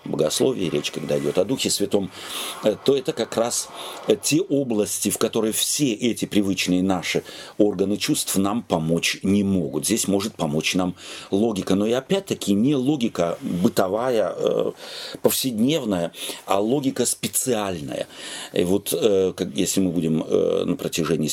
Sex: male